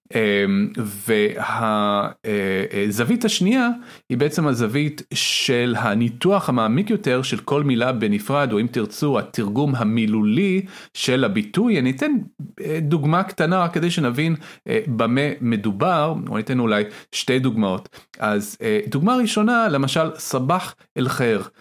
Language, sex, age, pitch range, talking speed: Hebrew, male, 40-59, 125-195 Hz, 120 wpm